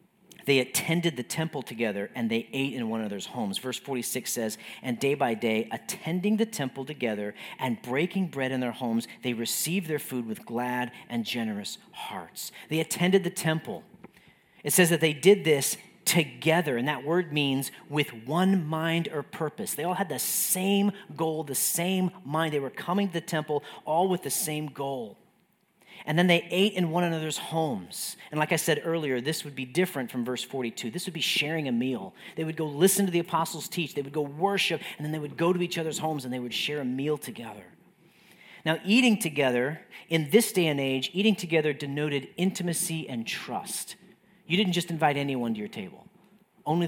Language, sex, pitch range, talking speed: English, male, 135-180 Hz, 200 wpm